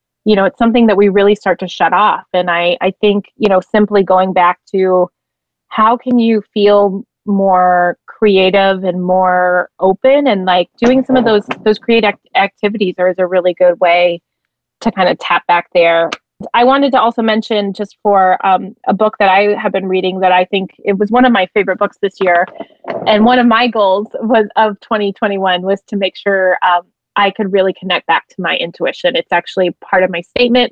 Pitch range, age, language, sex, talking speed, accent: 185-220 Hz, 20-39, English, female, 205 wpm, American